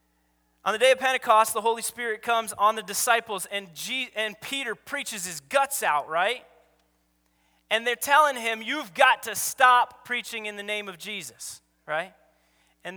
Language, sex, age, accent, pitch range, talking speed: English, male, 30-49, American, 150-235 Hz, 165 wpm